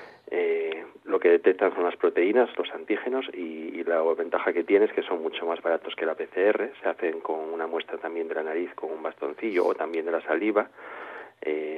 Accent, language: Spanish, Spanish